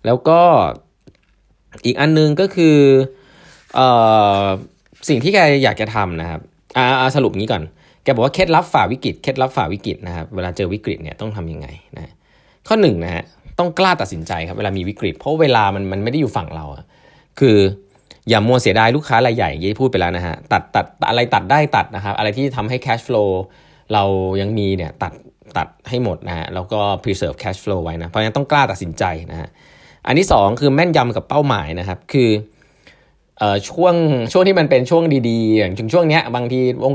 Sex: male